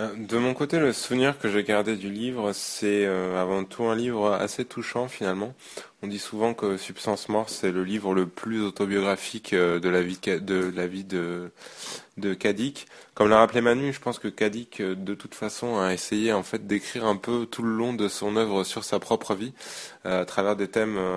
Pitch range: 95-115 Hz